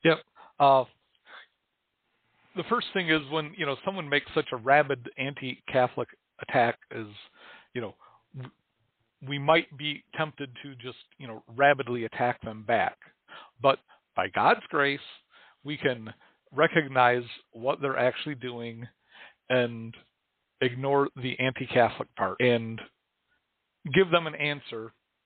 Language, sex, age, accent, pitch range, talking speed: English, male, 50-69, American, 120-145 Hz, 125 wpm